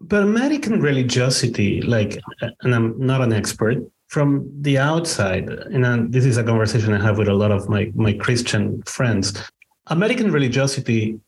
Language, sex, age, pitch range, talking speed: English, male, 30-49, 105-130 Hz, 165 wpm